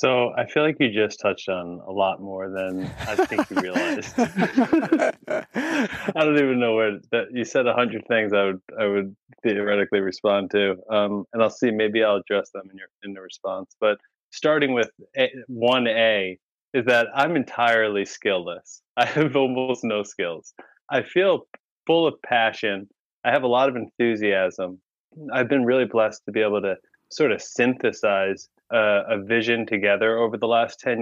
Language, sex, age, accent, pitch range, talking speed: English, male, 20-39, American, 100-125 Hz, 180 wpm